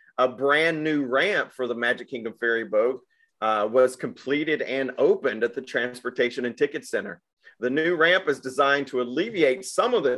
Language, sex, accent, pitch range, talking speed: English, male, American, 120-175 Hz, 185 wpm